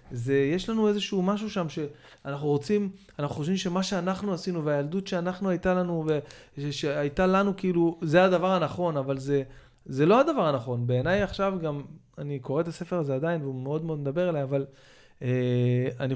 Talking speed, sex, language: 170 wpm, male, Hebrew